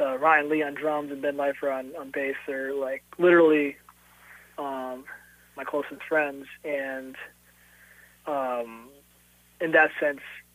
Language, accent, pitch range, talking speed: English, American, 130-160 Hz, 130 wpm